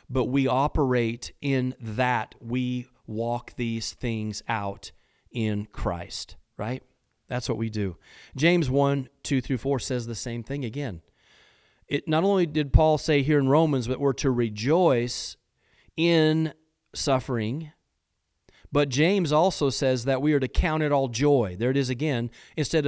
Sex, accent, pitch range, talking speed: male, American, 120-155 Hz, 155 wpm